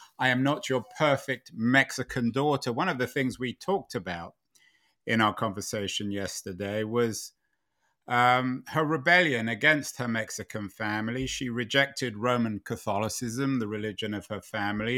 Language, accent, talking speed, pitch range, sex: English, British, 140 wpm, 105-135 Hz, male